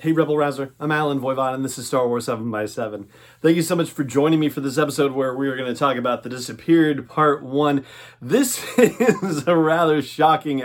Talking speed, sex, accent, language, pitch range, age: 215 wpm, male, American, English, 125-170 Hz, 30-49